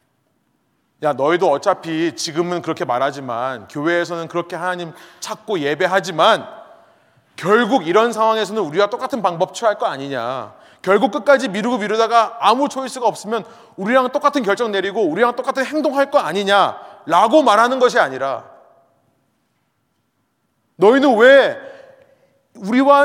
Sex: male